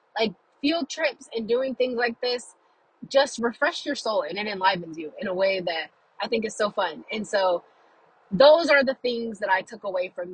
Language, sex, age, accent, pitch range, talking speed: English, female, 20-39, American, 180-245 Hz, 210 wpm